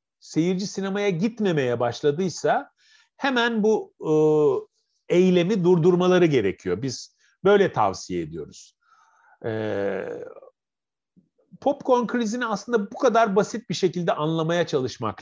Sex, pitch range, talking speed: male, 160-235 Hz, 90 wpm